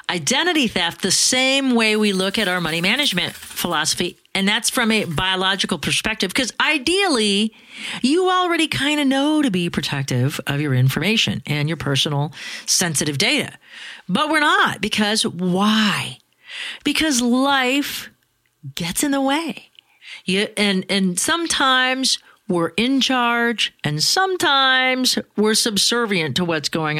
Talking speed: 135 wpm